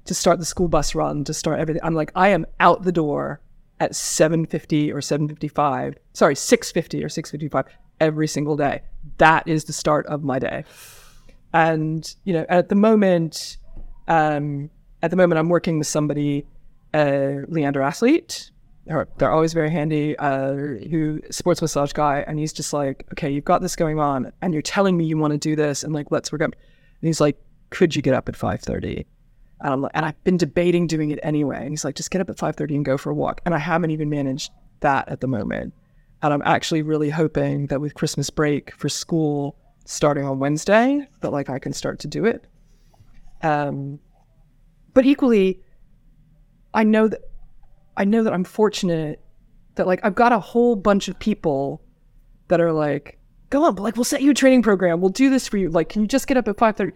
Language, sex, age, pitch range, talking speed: English, female, 20-39, 145-180 Hz, 205 wpm